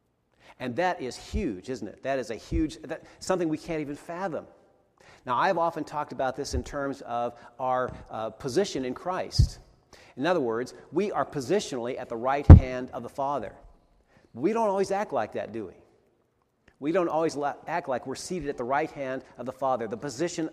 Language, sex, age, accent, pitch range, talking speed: English, male, 40-59, American, 125-160 Hz, 195 wpm